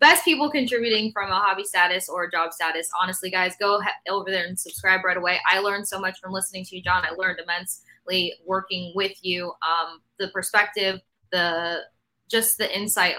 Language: English